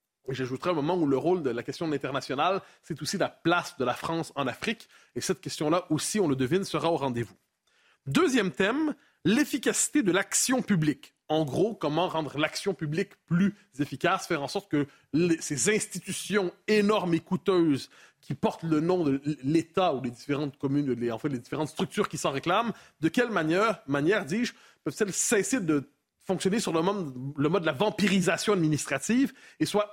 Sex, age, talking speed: male, 30-49, 185 wpm